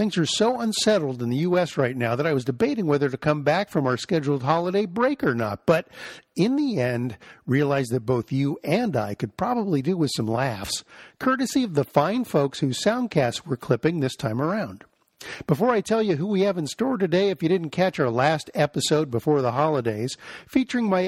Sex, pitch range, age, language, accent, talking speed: male, 135-200 Hz, 50-69, English, American, 210 wpm